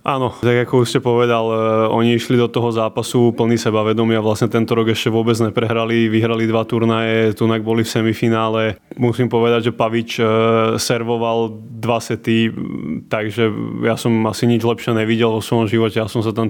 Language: Slovak